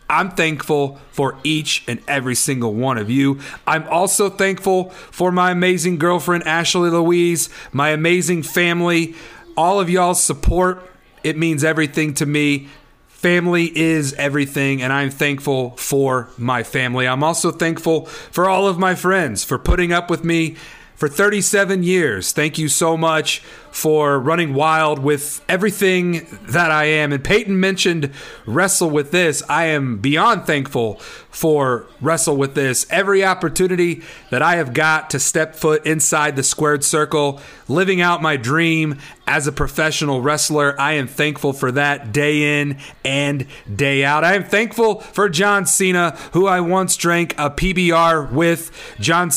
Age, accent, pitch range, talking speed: 40-59, American, 145-175 Hz, 155 wpm